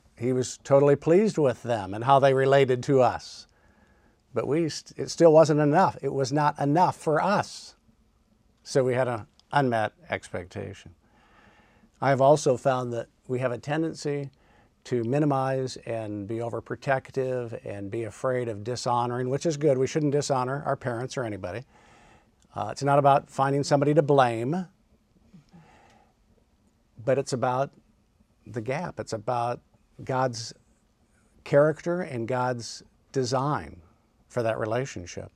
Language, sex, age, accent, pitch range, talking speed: English, male, 50-69, American, 115-140 Hz, 140 wpm